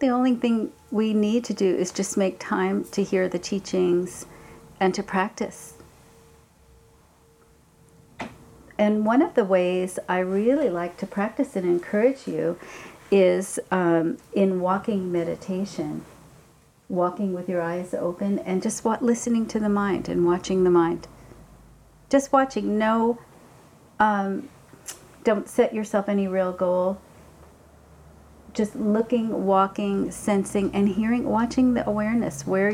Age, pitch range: 50-69, 185-225 Hz